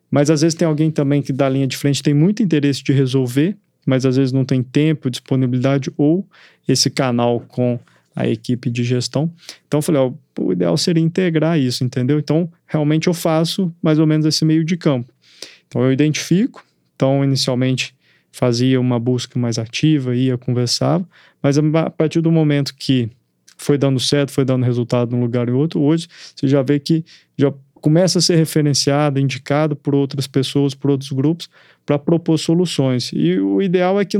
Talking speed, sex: 185 wpm, male